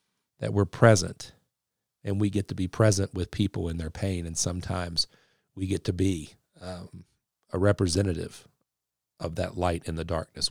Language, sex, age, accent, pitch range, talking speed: English, male, 40-59, American, 85-105 Hz, 165 wpm